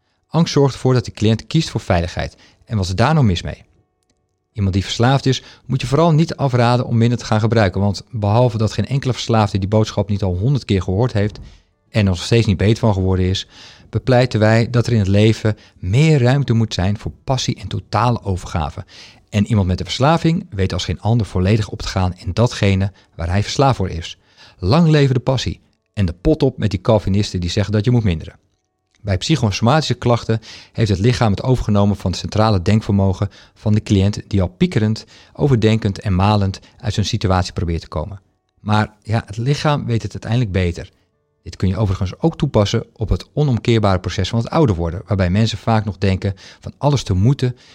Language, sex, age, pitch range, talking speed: Dutch, male, 50-69, 95-120 Hz, 205 wpm